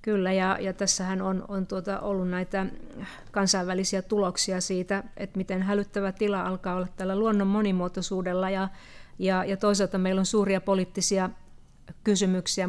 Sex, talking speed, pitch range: female, 140 wpm, 185-220 Hz